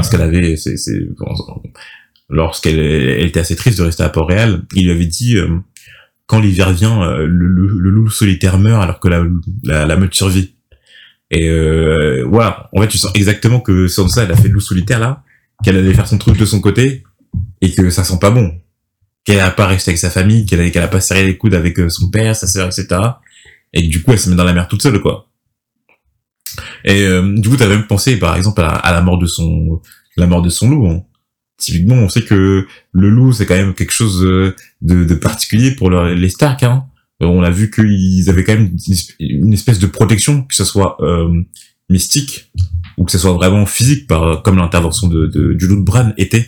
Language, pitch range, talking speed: French, 85-105 Hz, 230 wpm